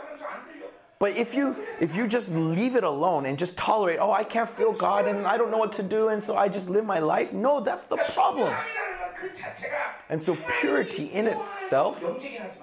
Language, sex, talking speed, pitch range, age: English, male, 190 wpm, 180-260 Hz, 30-49